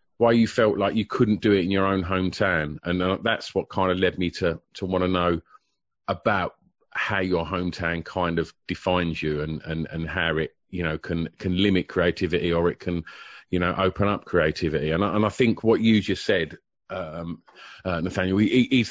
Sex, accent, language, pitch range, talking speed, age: male, British, English, 85-105 Hz, 205 wpm, 40-59